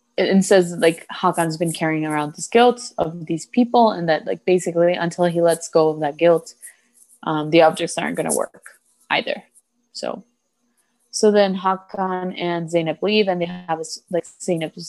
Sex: female